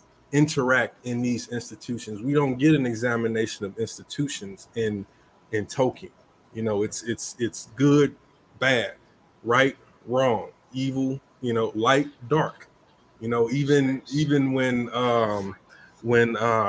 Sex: male